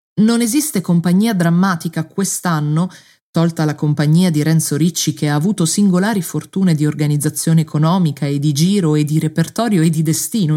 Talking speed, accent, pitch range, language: 160 wpm, native, 155-190 Hz, Italian